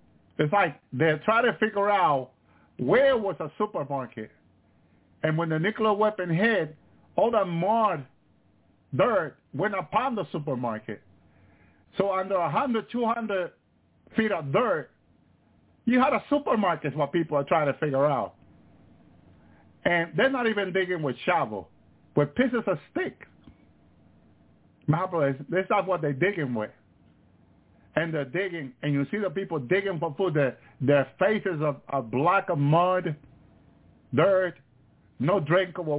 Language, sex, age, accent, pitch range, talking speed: English, male, 50-69, American, 135-190 Hz, 140 wpm